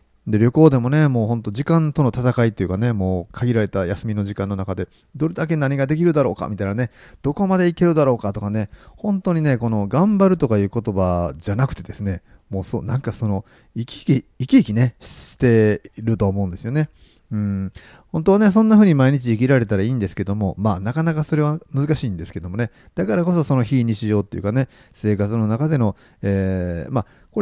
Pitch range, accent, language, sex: 100-145 Hz, native, Japanese, male